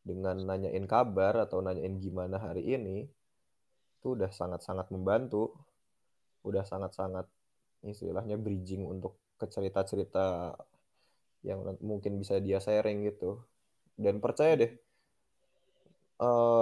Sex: male